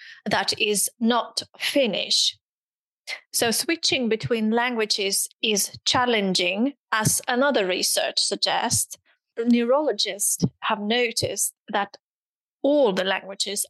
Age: 30-49